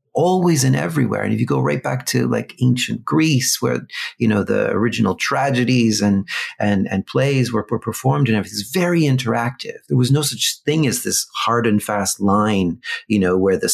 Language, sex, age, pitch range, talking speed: English, male, 40-59, 100-130 Hz, 200 wpm